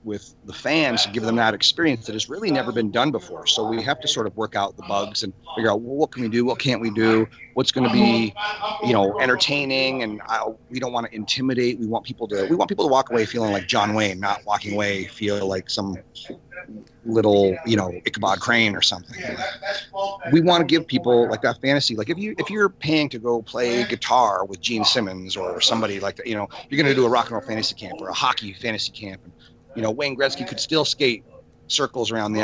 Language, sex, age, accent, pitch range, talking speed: English, male, 30-49, American, 105-130 Hz, 240 wpm